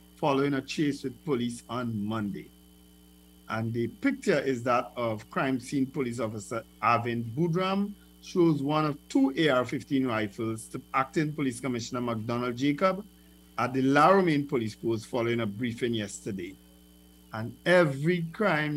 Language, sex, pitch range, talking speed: English, male, 115-170 Hz, 140 wpm